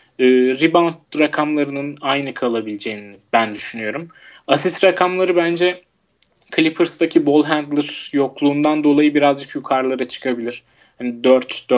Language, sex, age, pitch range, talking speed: Turkish, male, 30-49, 125-155 Hz, 100 wpm